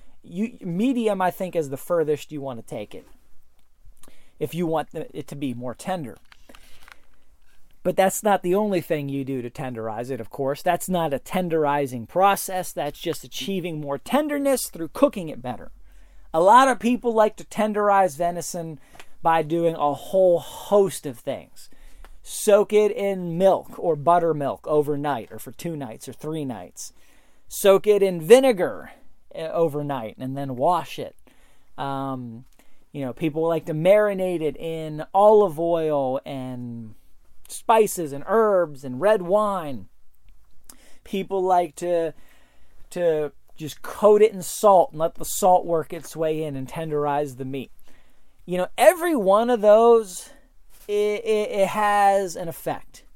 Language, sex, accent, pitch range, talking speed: English, male, American, 140-195 Hz, 155 wpm